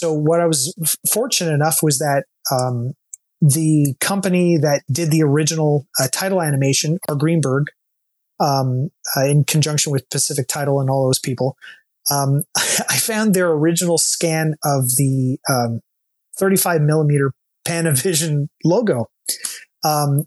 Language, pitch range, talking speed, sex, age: English, 140-165 Hz, 135 wpm, male, 30-49